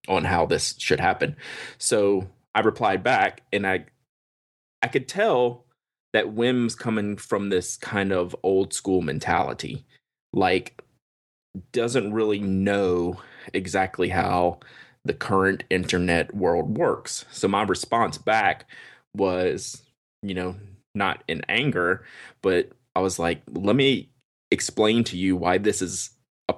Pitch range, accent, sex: 90-110 Hz, American, male